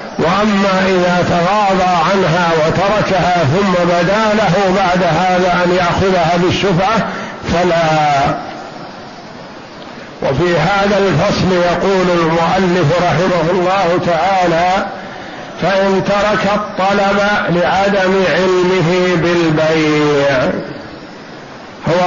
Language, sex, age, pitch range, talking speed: Arabic, male, 60-79, 165-190 Hz, 80 wpm